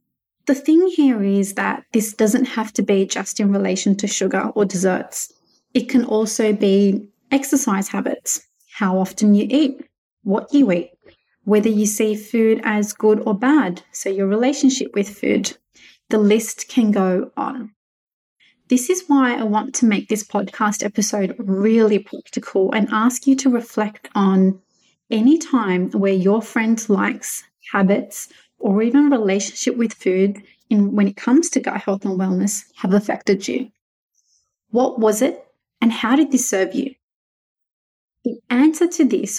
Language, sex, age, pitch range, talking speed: English, female, 30-49, 200-250 Hz, 155 wpm